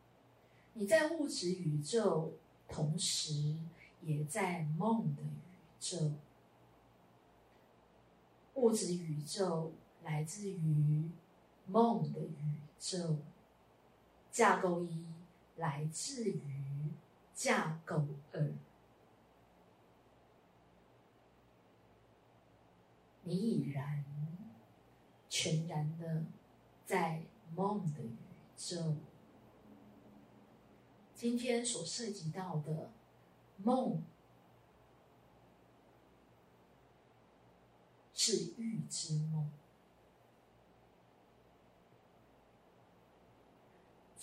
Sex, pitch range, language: female, 150-190 Hz, Chinese